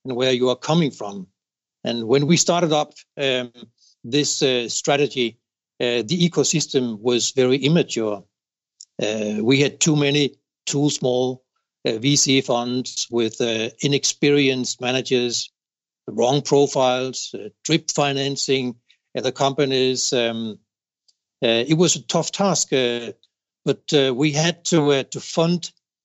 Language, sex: English, male